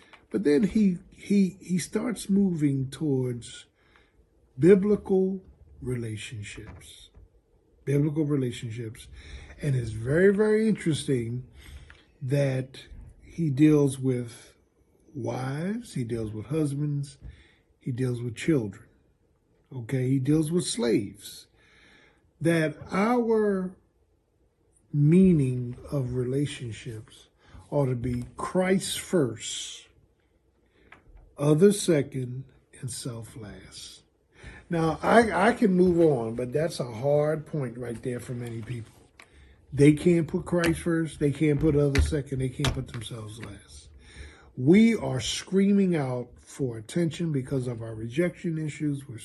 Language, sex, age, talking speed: English, male, 50-69, 115 wpm